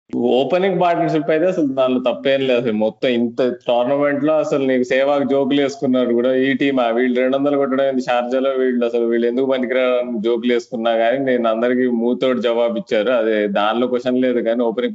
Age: 20-39